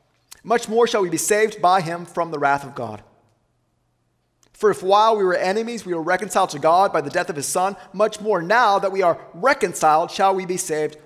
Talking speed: 220 wpm